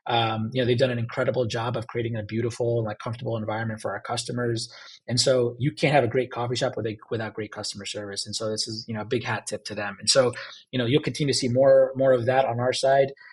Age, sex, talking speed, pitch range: 20-39, male, 275 wpm, 115-135 Hz